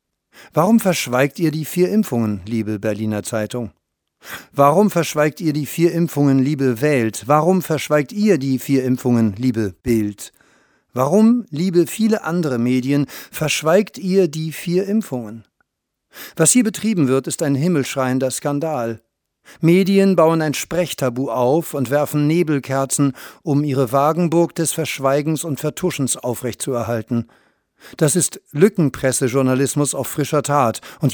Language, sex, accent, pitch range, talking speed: German, male, German, 130-165 Hz, 125 wpm